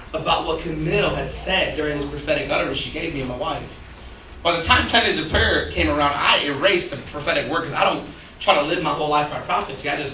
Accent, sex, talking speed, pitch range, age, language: American, male, 250 wpm, 140-160 Hz, 30-49, English